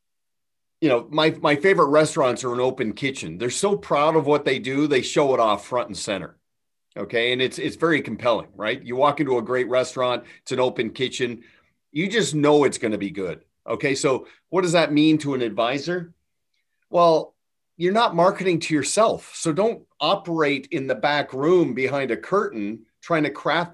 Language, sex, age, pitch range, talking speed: English, male, 40-59, 135-175 Hz, 195 wpm